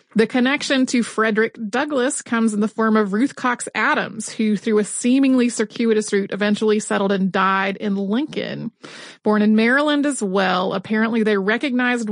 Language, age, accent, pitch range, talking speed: English, 30-49, American, 205-245 Hz, 165 wpm